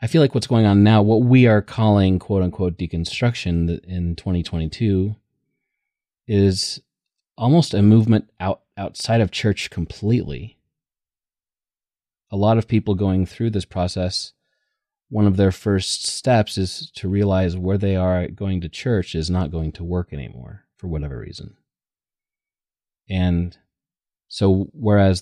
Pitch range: 90-110 Hz